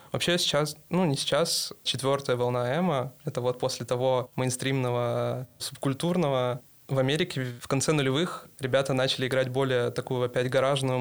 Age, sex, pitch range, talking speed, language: 20-39, male, 125-140 Hz, 140 wpm, Russian